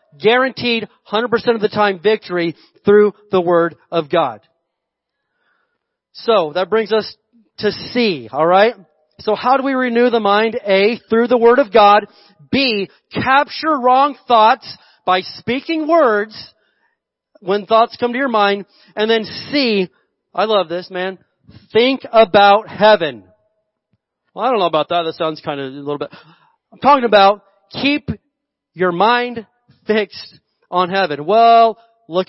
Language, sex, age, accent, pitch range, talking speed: English, male, 40-59, American, 185-225 Hz, 145 wpm